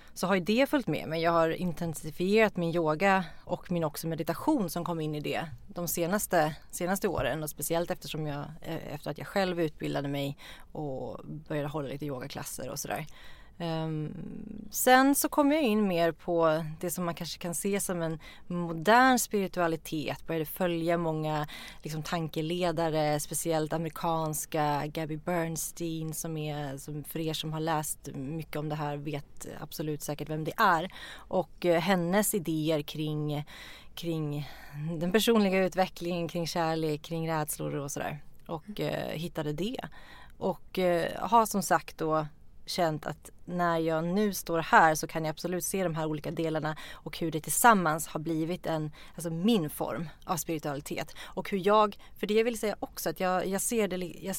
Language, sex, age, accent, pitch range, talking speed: English, female, 30-49, Swedish, 155-185 Hz, 165 wpm